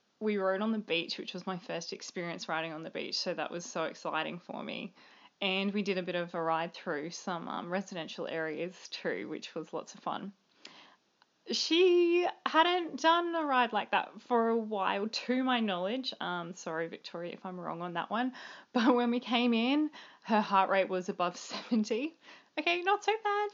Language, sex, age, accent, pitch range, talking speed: English, female, 20-39, Australian, 180-250 Hz, 195 wpm